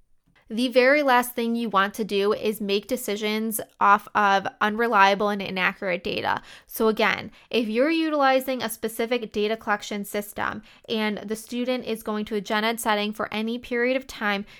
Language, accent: English, American